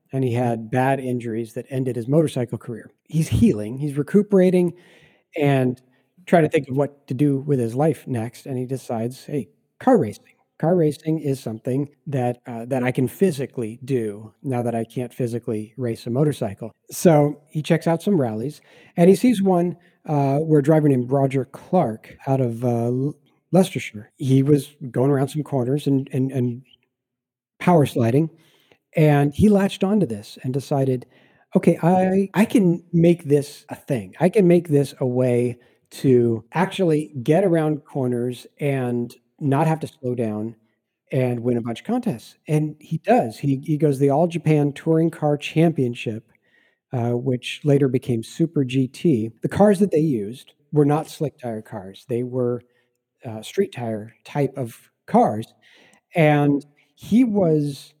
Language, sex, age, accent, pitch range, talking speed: English, male, 40-59, American, 125-160 Hz, 165 wpm